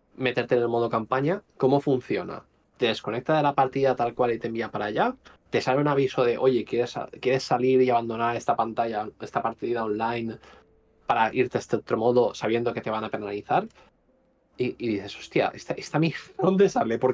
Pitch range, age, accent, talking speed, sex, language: 110-140 Hz, 20-39, Spanish, 205 wpm, male, Spanish